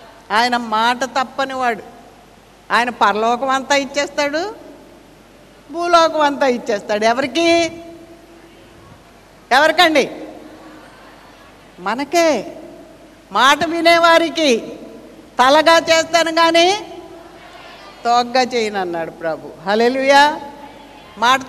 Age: 60-79